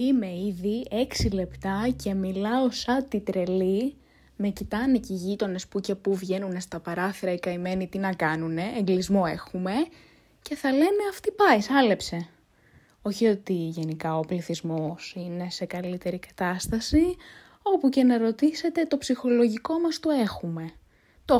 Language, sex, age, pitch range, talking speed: Greek, female, 20-39, 190-245 Hz, 145 wpm